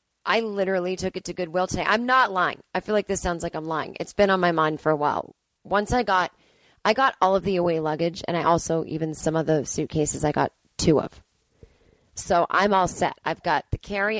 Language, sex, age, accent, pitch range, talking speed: English, female, 30-49, American, 160-195 Hz, 235 wpm